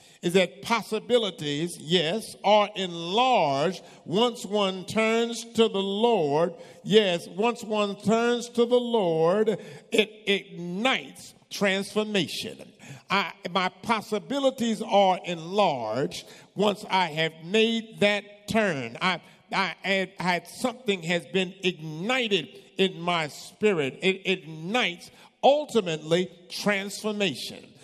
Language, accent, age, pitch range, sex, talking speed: English, American, 50-69, 175-215 Hz, male, 100 wpm